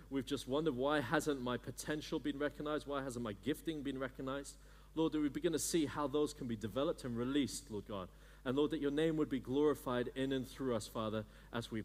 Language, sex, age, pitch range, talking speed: English, male, 40-59, 115-150 Hz, 230 wpm